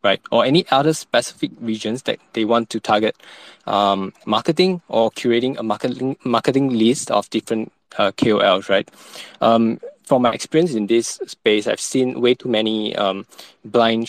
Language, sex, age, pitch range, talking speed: English, male, 20-39, 100-125 Hz, 160 wpm